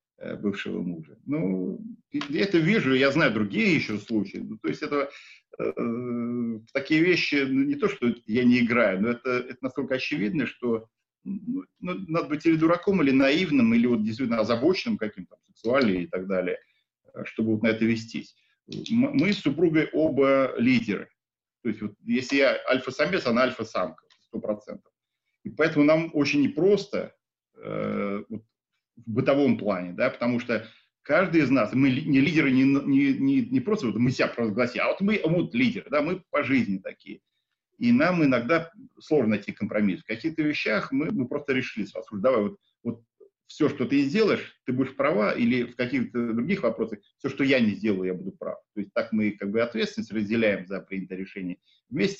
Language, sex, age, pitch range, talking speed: English, male, 40-59, 115-195 Hz, 175 wpm